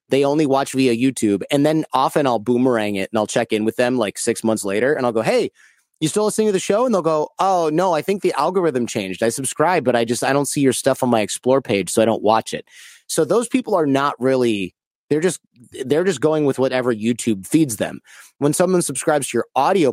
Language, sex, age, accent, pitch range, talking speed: English, male, 30-49, American, 110-150 Hz, 245 wpm